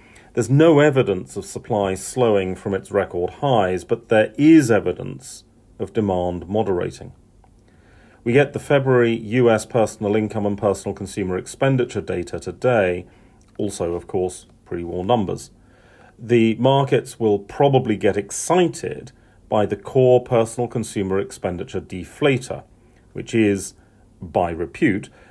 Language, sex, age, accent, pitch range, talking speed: English, male, 40-59, British, 95-120 Hz, 125 wpm